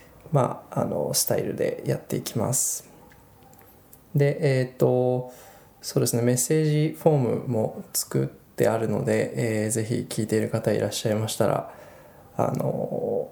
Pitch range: 115-145 Hz